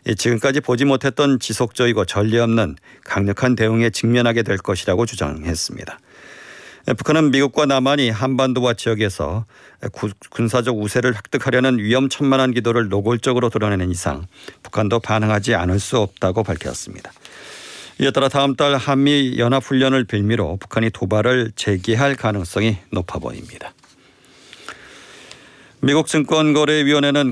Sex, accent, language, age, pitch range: male, native, Korean, 40-59, 110-130 Hz